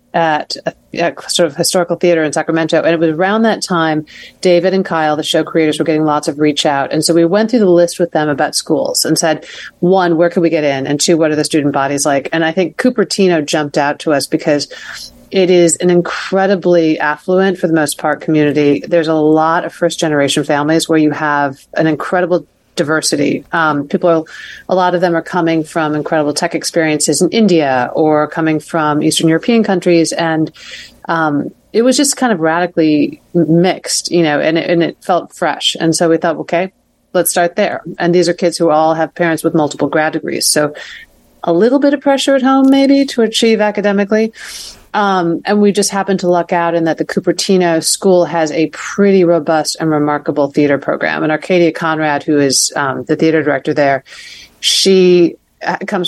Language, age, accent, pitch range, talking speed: English, 40-59, American, 155-180 Hz, 200 wpm